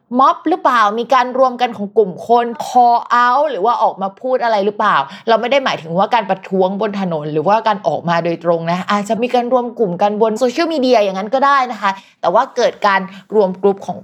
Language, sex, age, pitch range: Thai, female, 20-39, 180-245 Hz